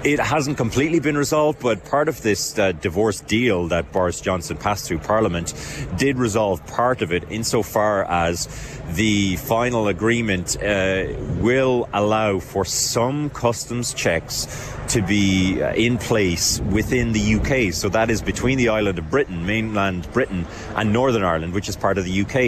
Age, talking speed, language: 30-49, 165 wpm, English